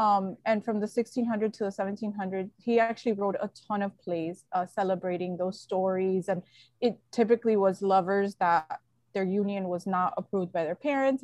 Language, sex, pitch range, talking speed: English, female, 180-225 Hz, 175 wpm